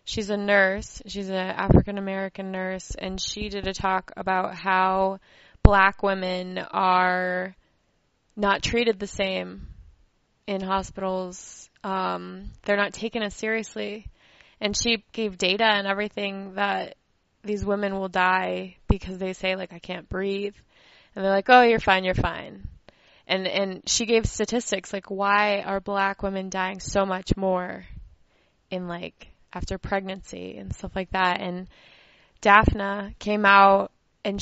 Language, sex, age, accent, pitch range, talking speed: English, female, 20-39, American, 185-205 Hz, 145 wpm